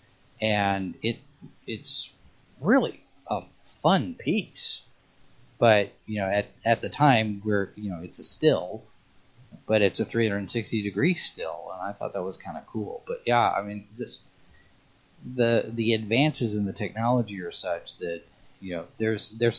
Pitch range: 95-115 Hz